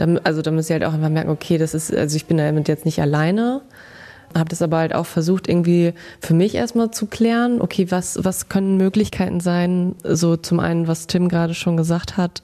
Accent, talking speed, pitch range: German, 215 wpm, 170-215 Hz